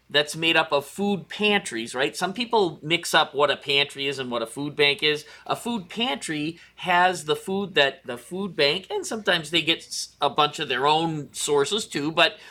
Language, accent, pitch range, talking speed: English, American, 155-210 Hz, 205 wpm